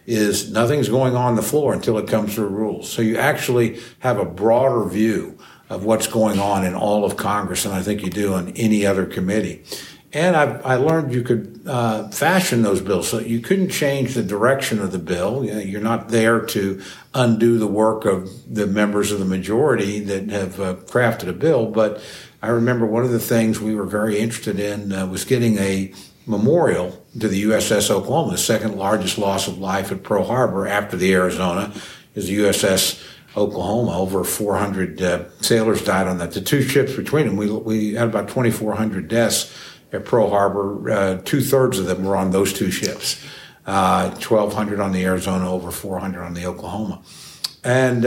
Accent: American